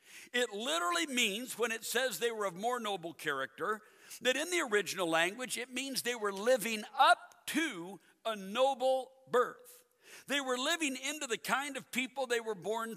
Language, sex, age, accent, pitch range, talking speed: English, male, 60-79, American, 180-265 Hz, 175 wpm